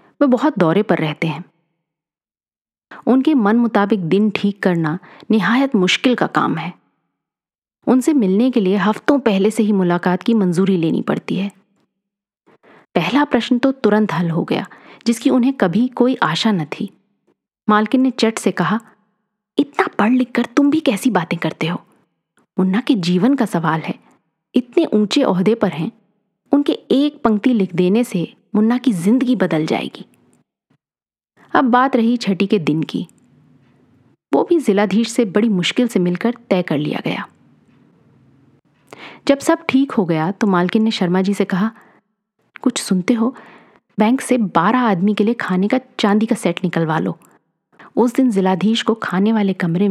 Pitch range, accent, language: 185-245 Hz, native, Hindi